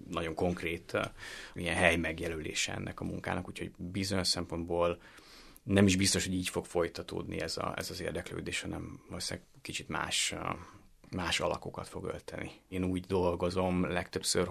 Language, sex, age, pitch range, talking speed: Hungarian, male, 30-49, 85-95 Hz, 155 wpm